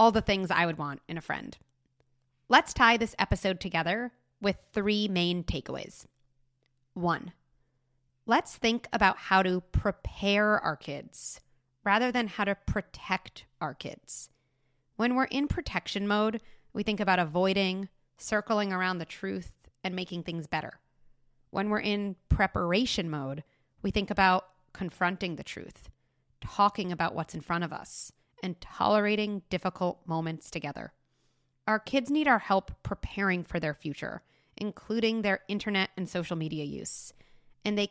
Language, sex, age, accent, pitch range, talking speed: English, female, 30-49, American, 165-210 Hz, 145 wpm